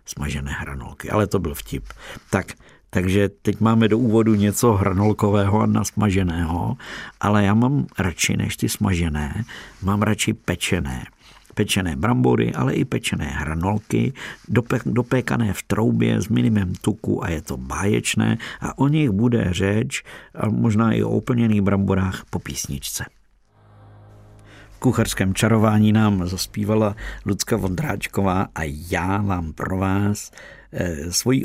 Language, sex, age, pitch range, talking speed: Czech, male, 50-69, 95-105 Hz, 125 wpm